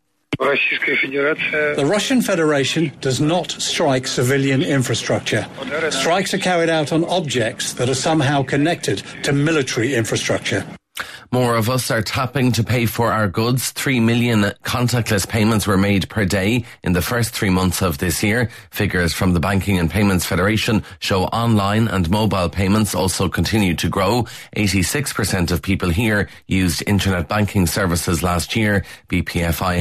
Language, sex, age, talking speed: English, male, 40-59, 150 wpm